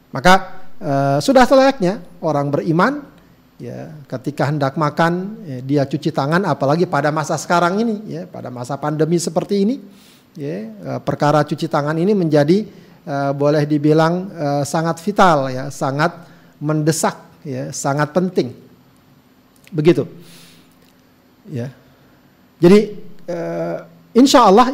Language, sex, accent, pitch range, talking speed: Indonesian, male, native, 145-195 Hz, 120 wpm